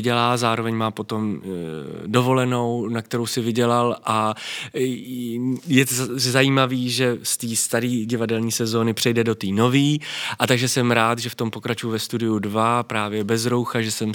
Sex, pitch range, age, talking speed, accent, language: male, 105-120 Hz, 20-39, 175 wpm, native, Czech